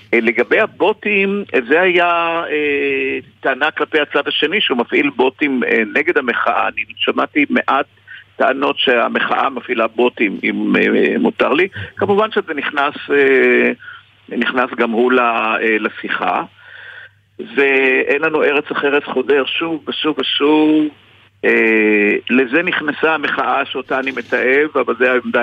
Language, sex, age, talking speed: Hebrew, male, 50-69, 125 wpm